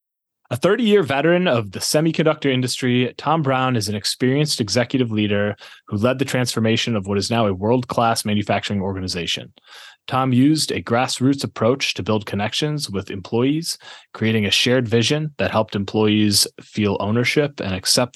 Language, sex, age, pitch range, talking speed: English, male, 20-39, 100-125 Hz, 155 wpm